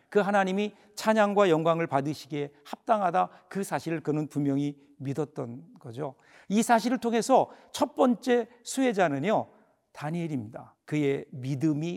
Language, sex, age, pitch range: Korean, male, 50-69, 155-210 Hz